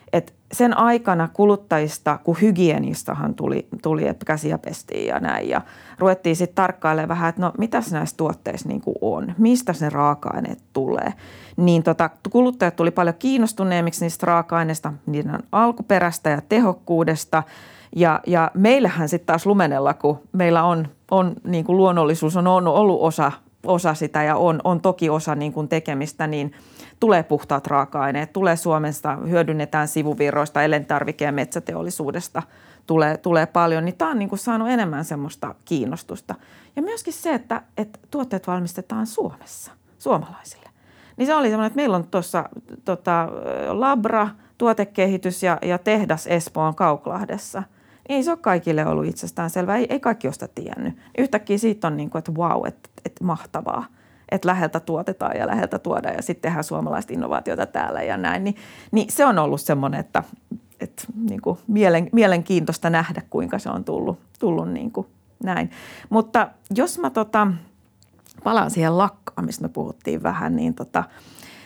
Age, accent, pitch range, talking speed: 30-49, native, 160-210 Hz, 150 wpm